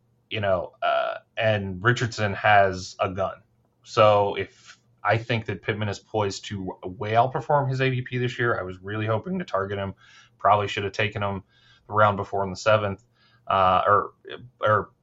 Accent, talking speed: American, 175 wpm